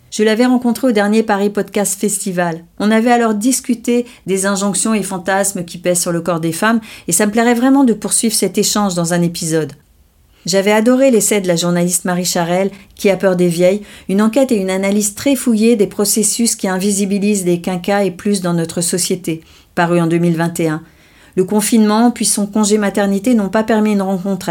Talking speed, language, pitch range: 195 wpm, French, 180-220 Hz